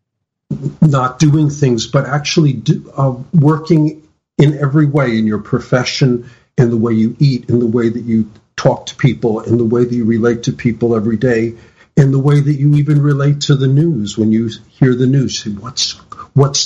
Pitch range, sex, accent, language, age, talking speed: 115-145 Hz, male, American, English, 50-69, 190 wpm